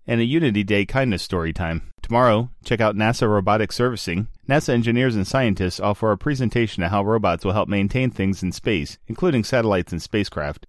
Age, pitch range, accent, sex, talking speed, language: 30-49, 95-120 Hz, American, male, 185 wpm, English